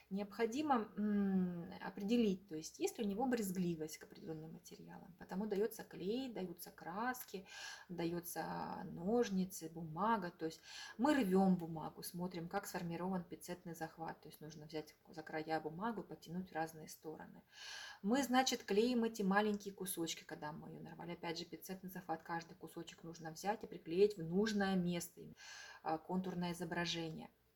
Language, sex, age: Russian, female, 20-39